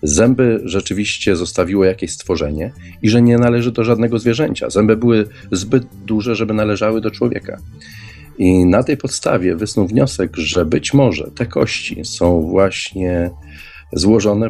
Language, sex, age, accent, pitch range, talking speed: Polish, male, 40-59, native, 80-110 Hz, 140 wpm